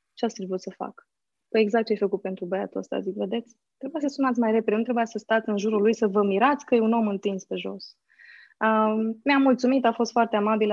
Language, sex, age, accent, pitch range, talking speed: Romanian, female, 20-39, native, 190-235 Hz, 245 wpm